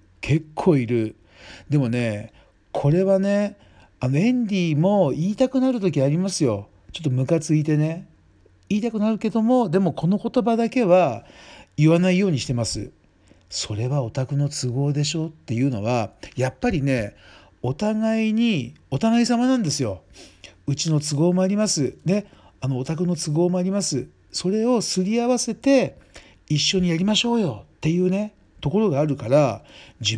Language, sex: Japanese, male